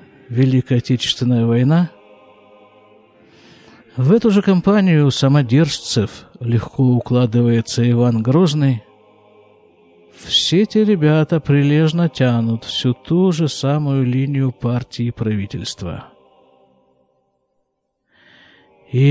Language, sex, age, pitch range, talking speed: Russian, male, 50-69, 115-165 Hz, 80 wpm